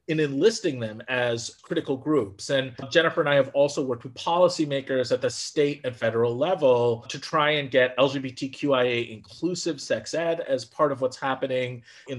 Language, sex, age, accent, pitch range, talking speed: English, male, 30-49, American, 130-160 Hz, 165 wpm